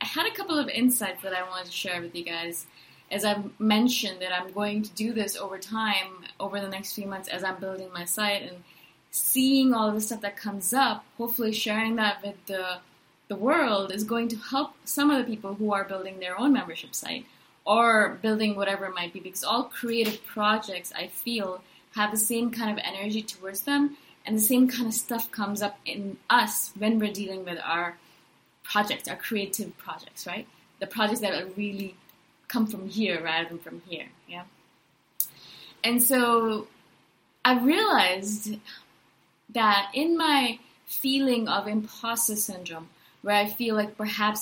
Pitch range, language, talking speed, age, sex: 190-225 Hz, English, 180 wpm, 20-39, female